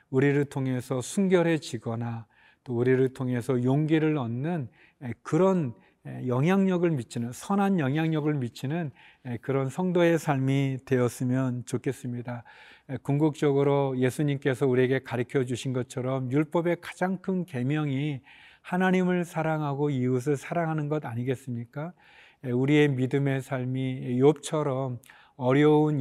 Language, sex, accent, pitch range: Korean, male, native, 130-160 Hz